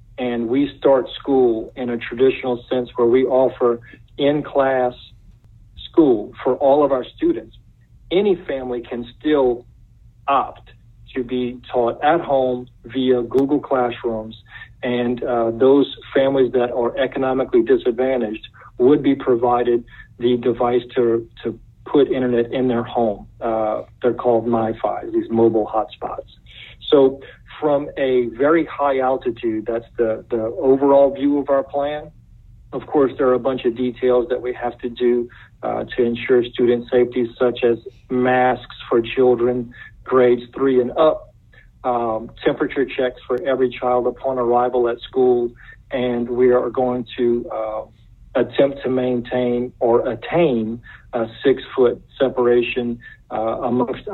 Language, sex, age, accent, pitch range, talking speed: English, male, 50-69, American, 120-130 Hz, 140 wpm